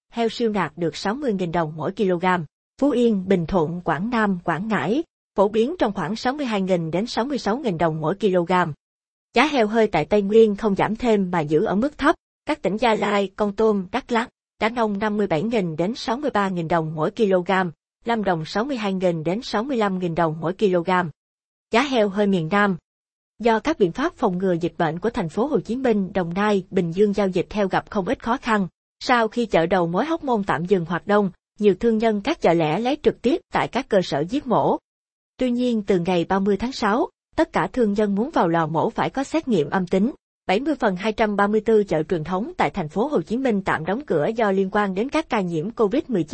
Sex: female